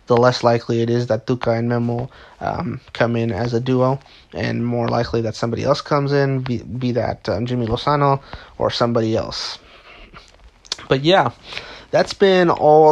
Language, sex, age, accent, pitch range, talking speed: English, male, 30-49, American, 115-130 Hz, 170 wpm